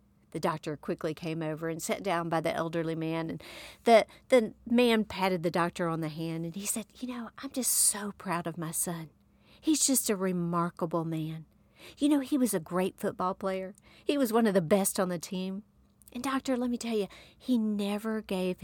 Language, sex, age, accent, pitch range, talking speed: English, female, 50-69, American, 165-210 Hz, 210 wpm